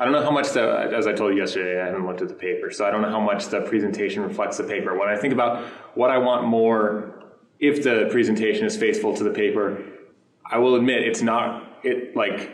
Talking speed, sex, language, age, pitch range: 245 wpm, male, English, 20-39, 105-130 Hz